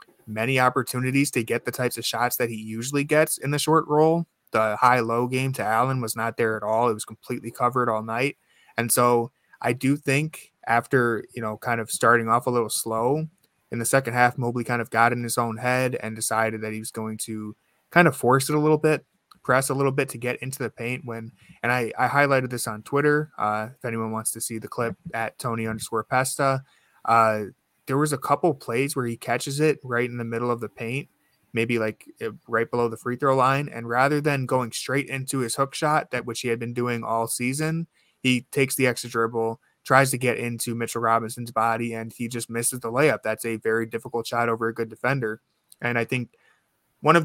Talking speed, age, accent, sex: 225 wpm, 20-39, American, male